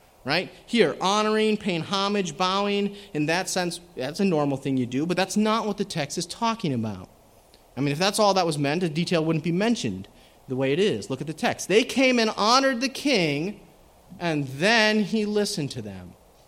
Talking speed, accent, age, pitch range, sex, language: 210 wpm, American, 30-49, 140-210 Hz, male, English